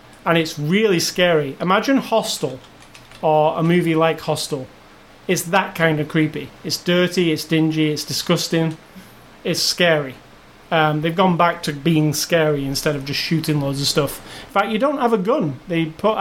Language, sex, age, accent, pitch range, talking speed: English, male, 30-49, British, 155-190 Hz, 175 wpm